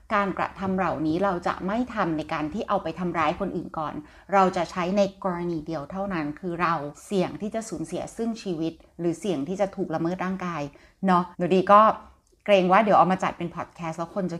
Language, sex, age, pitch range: Thai, female, 30-49, 165-200 Hz